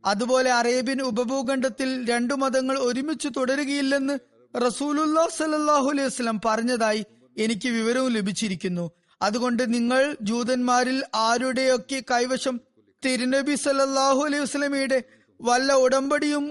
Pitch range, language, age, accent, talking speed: 220-265 Hz, Malayalam, 20-39, native, 95 wpm